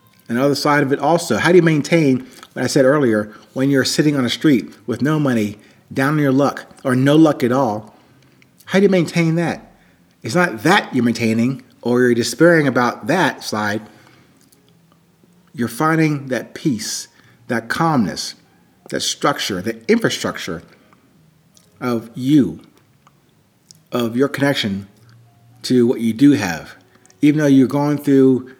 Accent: American